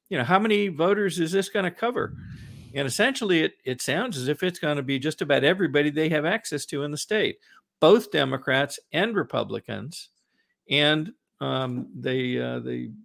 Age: 50-69